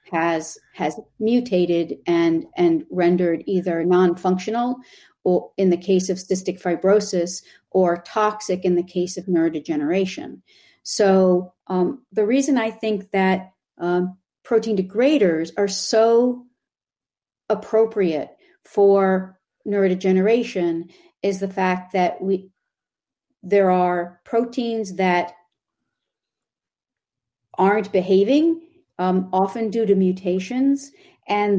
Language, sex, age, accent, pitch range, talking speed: English, female, 50-69, American, 180-215 Hz, 100 wpm